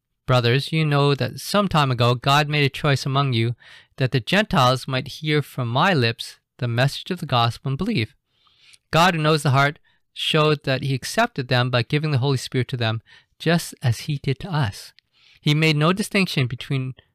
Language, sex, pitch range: Chinese, male, 130-160 Hz